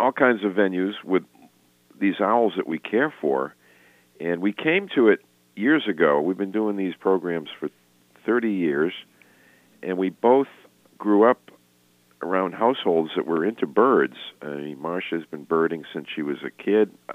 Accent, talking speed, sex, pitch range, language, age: American, 160 wpm, male, 75-95 Hz, English, 50-69